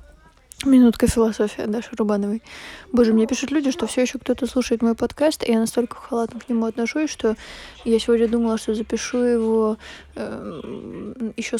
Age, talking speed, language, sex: 20-39, 160 wpm, Russian, female